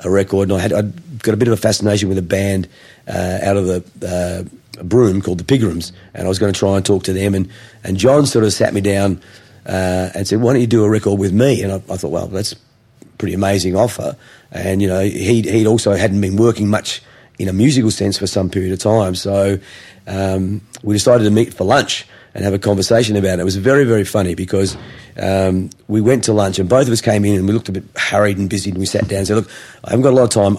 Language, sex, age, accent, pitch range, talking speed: English, male, 40-59, Australian, 95-115 Hz, 265 wpm